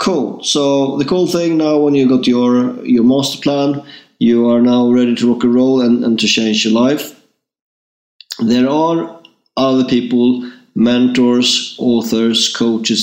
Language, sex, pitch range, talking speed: English, male, 110-130 Hz, 155 wpm